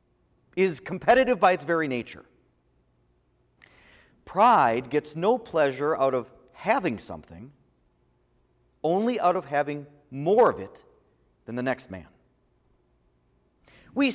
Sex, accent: male, American